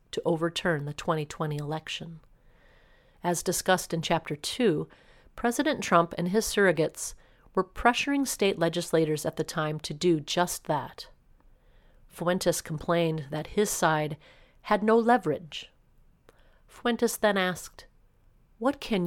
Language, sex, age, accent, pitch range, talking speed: English, female, 40-59, American, 155-185 Hz, 125 wpm